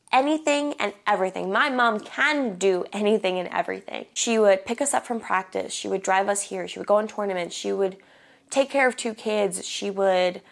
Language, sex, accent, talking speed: English, female, American, 205 wpm